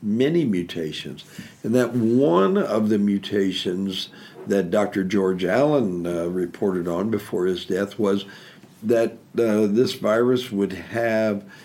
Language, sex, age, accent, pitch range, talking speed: English, male, 60-79, American, 95-115 Hz, 130 wpm